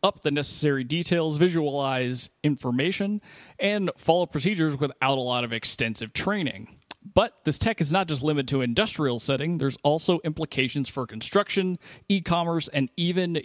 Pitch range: 125-155 Hz